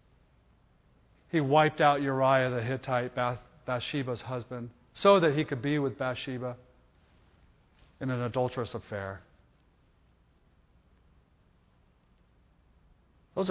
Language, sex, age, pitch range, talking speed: English, male, 40-59, 100-145 Hz, 90 wpm